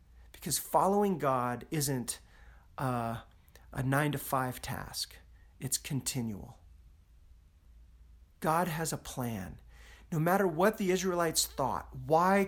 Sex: male